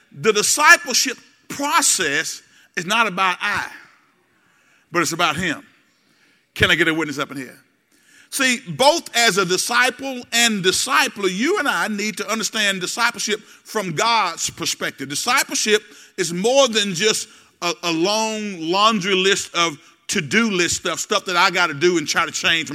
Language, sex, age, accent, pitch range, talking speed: English, male, 50-69, American, 190-245 Hz, 160 wpm